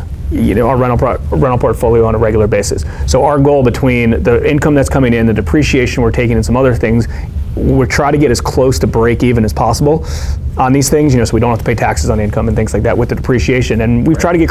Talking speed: 275 wpm